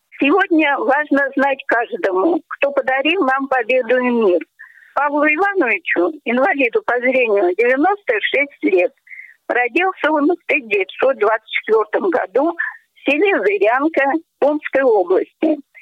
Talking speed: 100 wpm